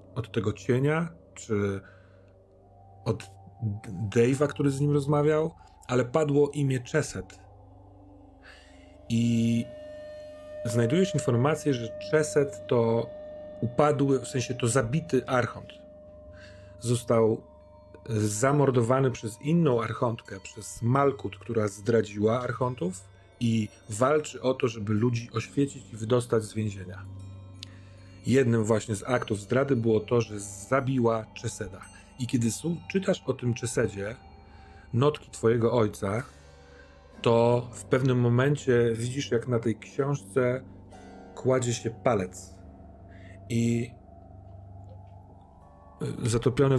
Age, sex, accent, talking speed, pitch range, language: 40-59, male, native, 105 wpm, 95-130 Hz, Polish